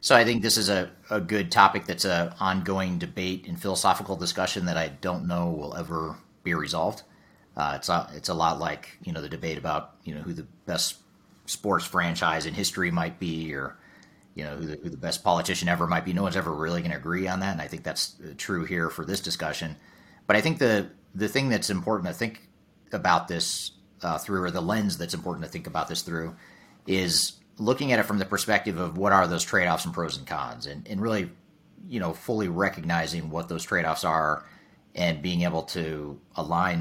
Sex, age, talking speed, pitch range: male, 40-59, 215 wpm, 80-95 Hz